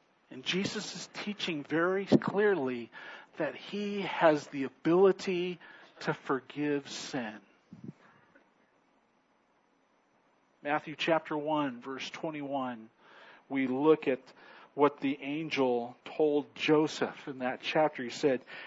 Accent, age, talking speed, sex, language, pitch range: American, 50-69, 105 wpm, male, English, 135-165 Hz